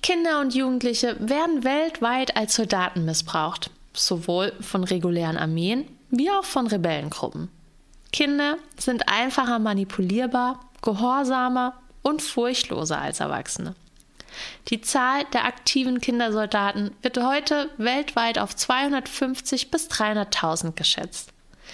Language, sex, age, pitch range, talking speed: German, female, 20-39, 190-260 Hz, 105 wpm